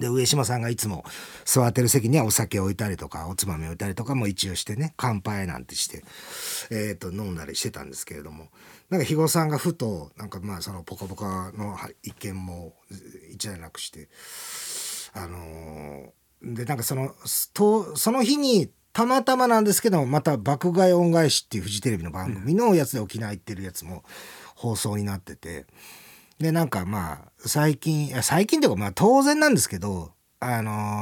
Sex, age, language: male, 40-59, Japanese